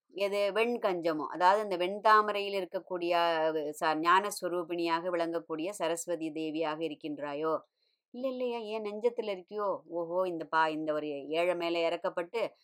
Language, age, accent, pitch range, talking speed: Tamil, 20-39, native, 165-200 Hz, 120 wpm